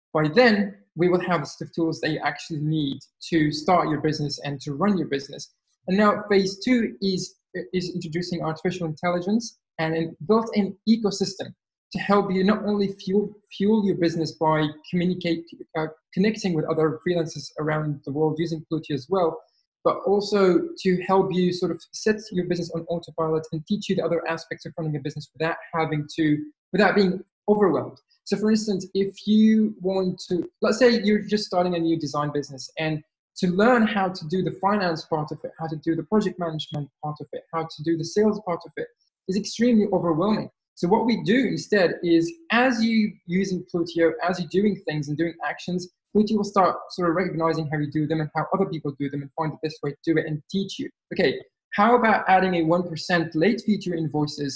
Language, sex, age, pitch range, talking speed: English, male, 20-39, 160-200 Hz, 205 wpm